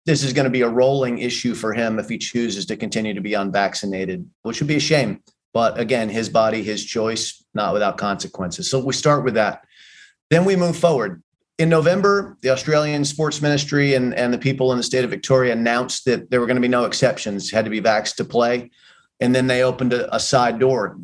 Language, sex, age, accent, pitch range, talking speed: English, male, 30-49, American, 110-130 Hz, 225 wpm